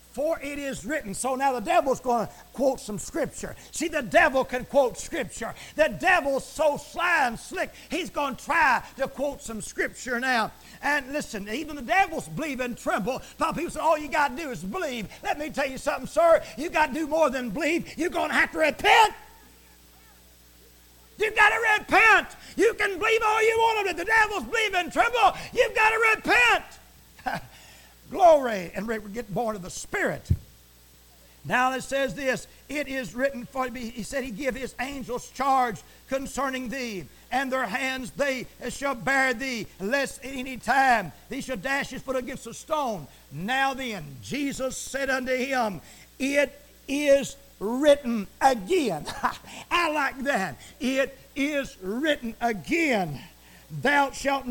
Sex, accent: male, American